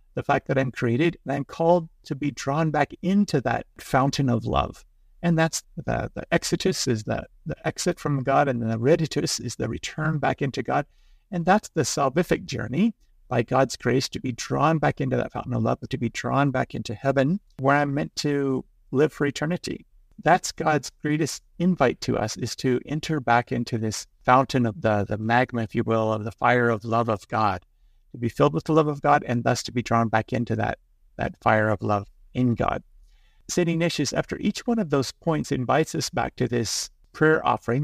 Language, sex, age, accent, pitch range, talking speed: English, male, 50-69, American, 120-155 Hz, 205 wpm